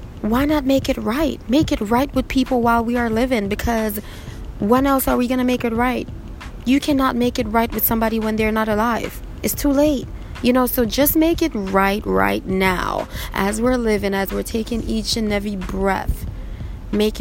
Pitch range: 195-230 Hz